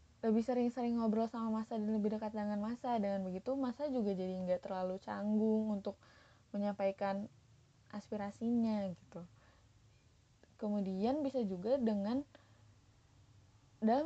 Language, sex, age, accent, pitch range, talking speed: Indonesian, female, 20-39, native, 195-235 Hz, 115 wpm